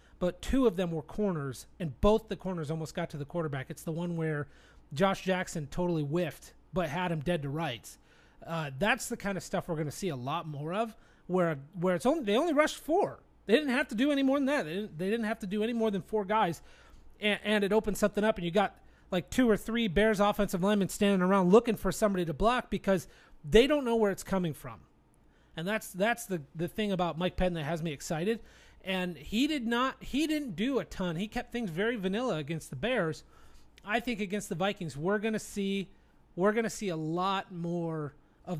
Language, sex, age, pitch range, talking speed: English, male, 30-49, 170-220 Hz, 230 wpm